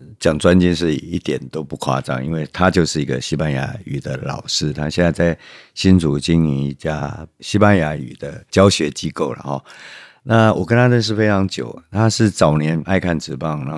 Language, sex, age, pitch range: Chinese, male, 50-69, 75-90 Hz